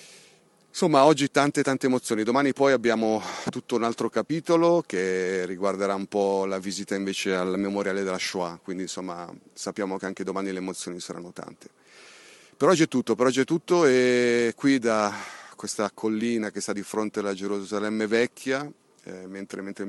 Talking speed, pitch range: 170 wpm, 100-125 Hz